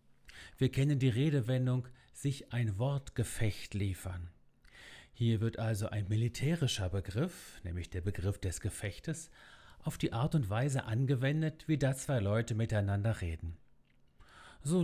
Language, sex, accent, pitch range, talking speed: German, male, German, 100-150 Hz, 130 wpm